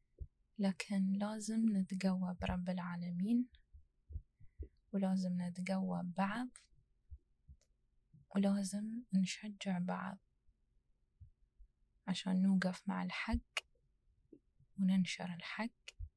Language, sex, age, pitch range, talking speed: Arabic, female, 20-39, 180-195 Hz, 65 wpm